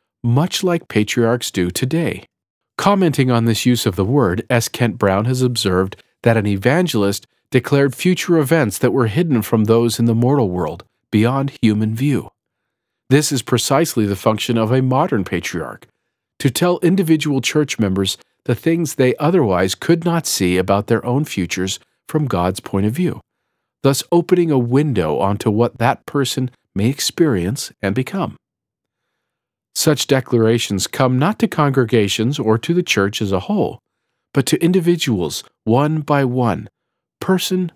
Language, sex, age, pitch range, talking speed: English, male, 50-69, 110-150 Hz, 155 wpm